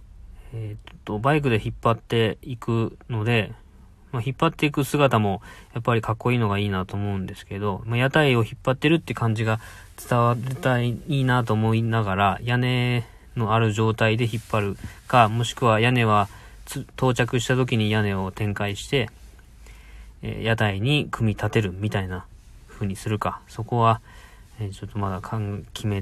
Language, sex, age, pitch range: Japanese, male, 20-39, 95-120 Hz